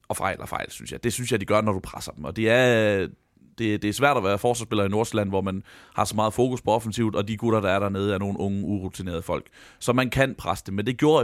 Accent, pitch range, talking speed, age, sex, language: native, 100-120 Hz, 290 wpm, 30-49, male, Danish